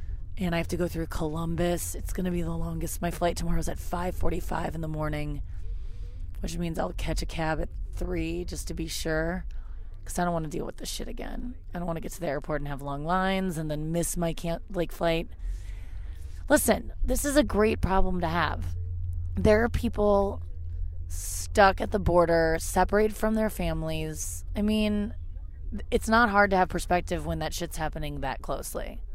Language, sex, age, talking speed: English, female, 30-49, 195 wpm